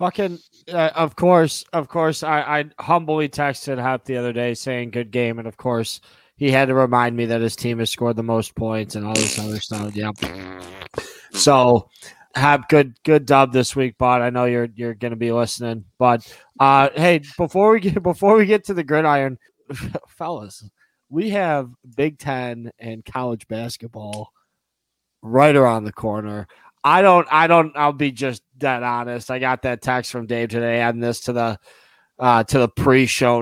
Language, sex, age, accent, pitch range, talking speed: English, male, 20-39, American, 115-140 Hz, 185 wpm